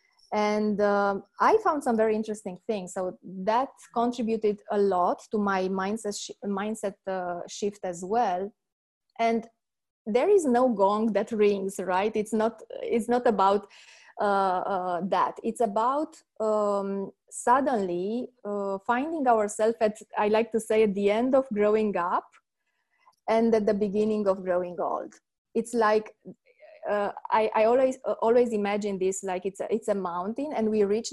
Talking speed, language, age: 155 wpm, English, 20-39